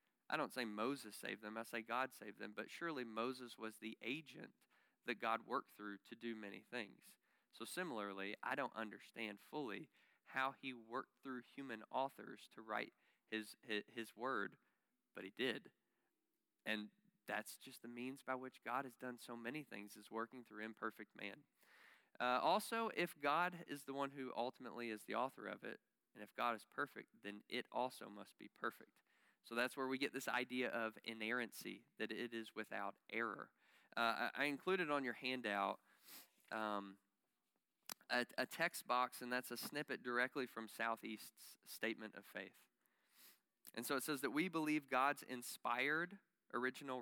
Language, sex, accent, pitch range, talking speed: English, male, American, 110-130 Hz, 170 wpm